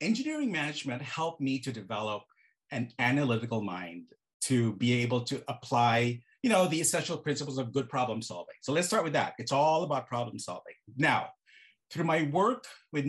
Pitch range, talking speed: 120-160 Hz, 175 wpm